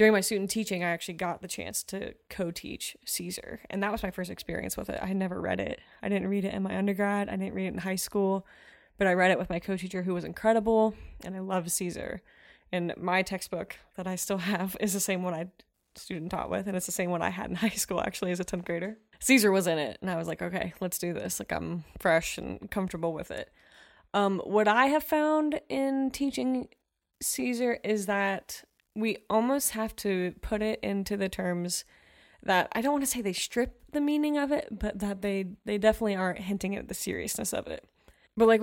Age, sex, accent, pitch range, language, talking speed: 20-39, female, American, 180-215 Hz, English, 225 wpm